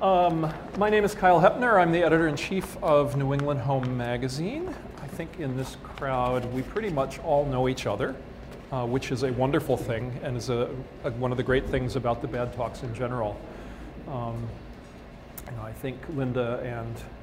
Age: 40-59